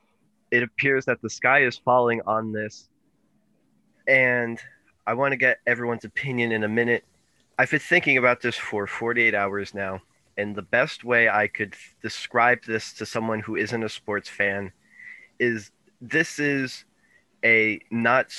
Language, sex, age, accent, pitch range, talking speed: English, male, 20-39, American, 110-125 Hz, 155 wpm